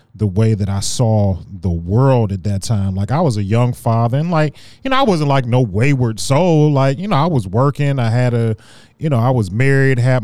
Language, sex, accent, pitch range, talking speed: English, male, American, 110-135 Hz, 240 wpm